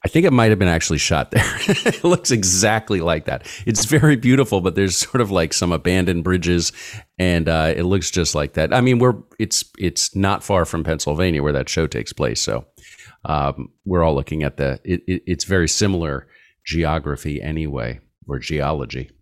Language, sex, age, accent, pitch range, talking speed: English, male, 40-59, American, 80-110 Hz, 195 wpm